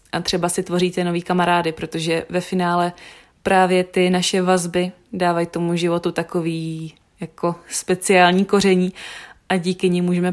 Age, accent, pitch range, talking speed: 20-39, native, 165-185 Hz, 140 wpm